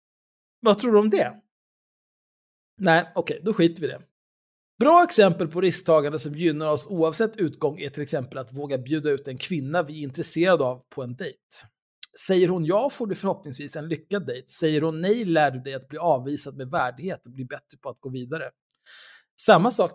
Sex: male